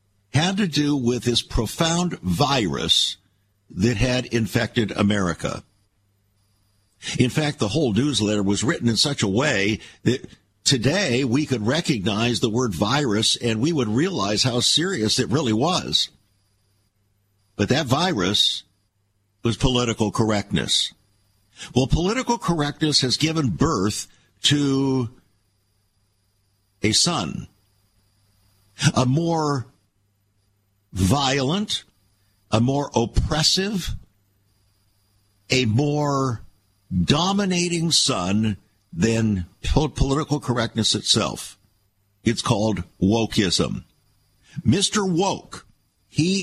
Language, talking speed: English, 95 wpm